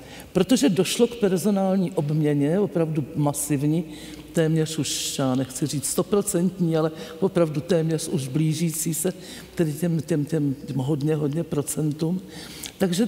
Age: 60-79